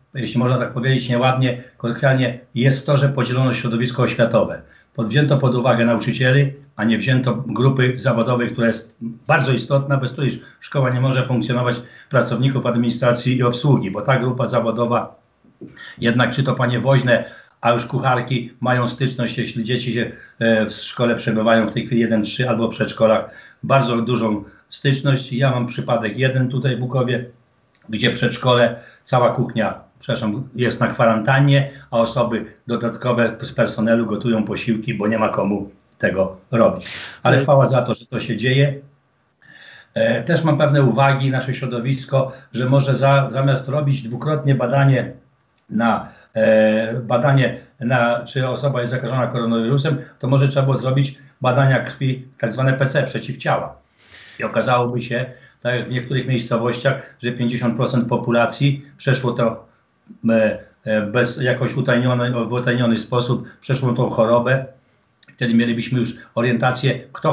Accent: native